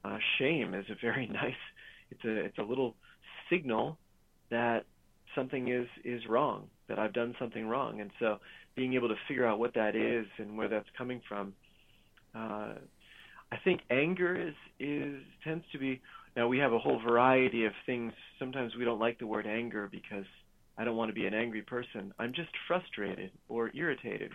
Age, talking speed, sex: 30-49, 185 wpm, male